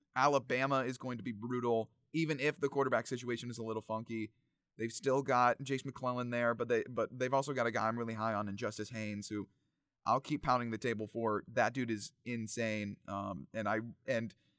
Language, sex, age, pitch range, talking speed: English, male, 20-39, 115-150 Hz, 210 wpm